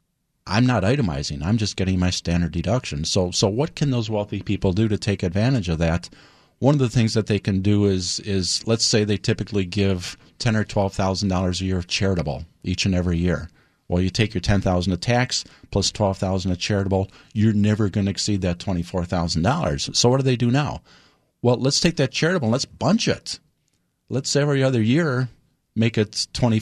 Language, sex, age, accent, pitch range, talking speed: English, male, 50-69, American, 90-115 Hz, 210 wpm